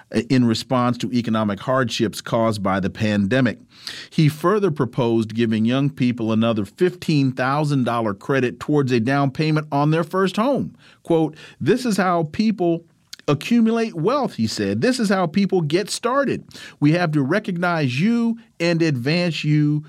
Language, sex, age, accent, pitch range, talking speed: English, male, 40-59, American, 130-200 Hz, 155 wpm